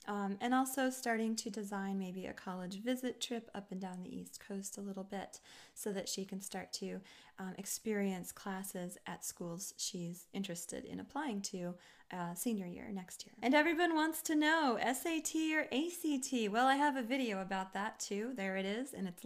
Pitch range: 190-250 Hz